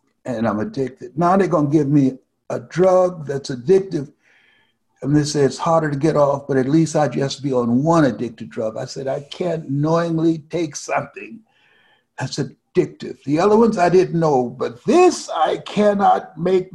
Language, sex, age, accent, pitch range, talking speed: English, male, 60-79, American, 130-170 Hz, 185 wpm